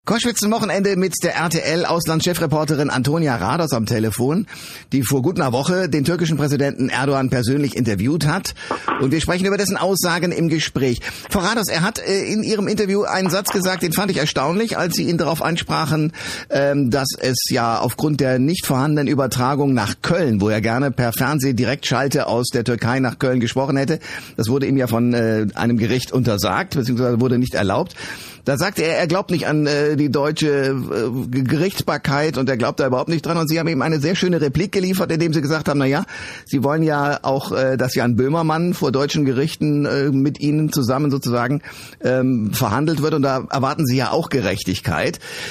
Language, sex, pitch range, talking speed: German, male, 130-170 Hz, 190 wpm